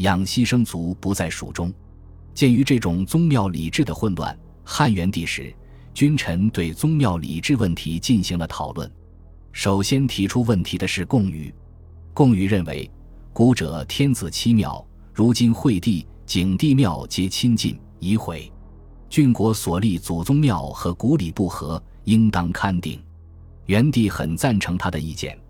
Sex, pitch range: male, 85-115 Hz